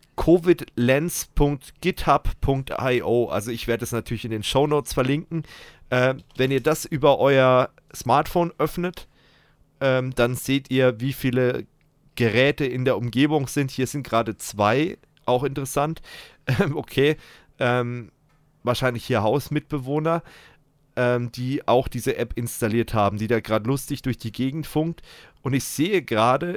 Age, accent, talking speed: 40-59, German, 135 wpm